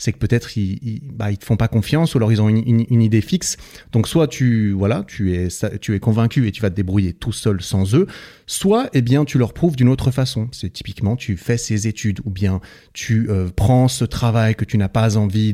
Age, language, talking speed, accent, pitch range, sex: 30-49, French, 245 wpm, French, 100-130 Hz, male